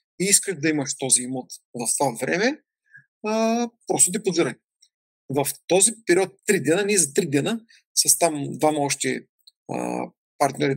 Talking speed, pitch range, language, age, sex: 150 wpm, 140-180 Hz, Bulgarian, 40-59, male